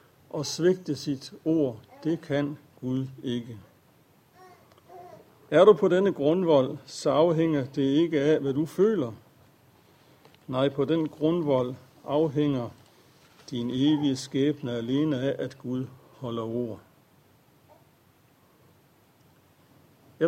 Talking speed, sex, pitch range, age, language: 105 wpm, male, 135-165 Hz, 60-79, Danish